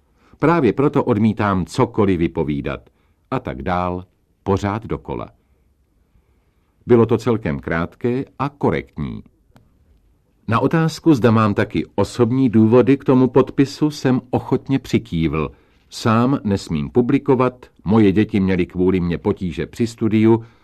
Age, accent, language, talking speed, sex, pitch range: 50-69, native, Czech, 115 wpm, male, 85-115 Hz